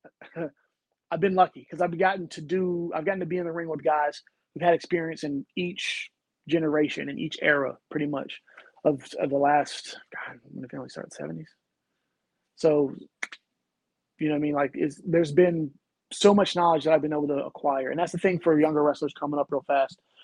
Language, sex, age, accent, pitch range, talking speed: English, male, 30-49, American, 145-175 Hz, 210 wpm